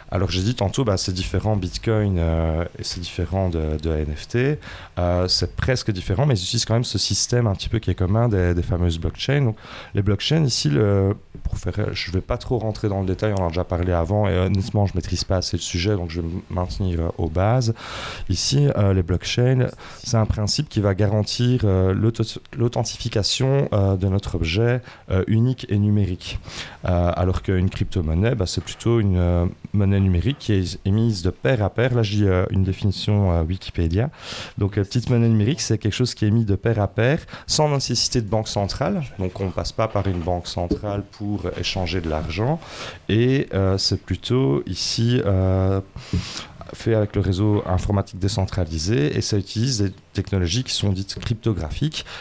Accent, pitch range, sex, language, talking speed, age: French, 90-115 Hz, male, French, 200 wpm, 30-49